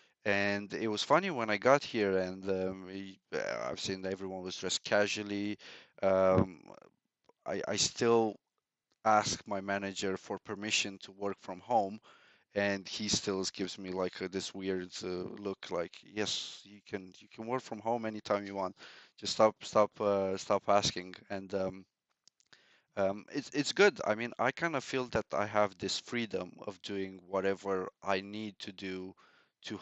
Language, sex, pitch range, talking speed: English, male, 95-115 Hz, 170 wpm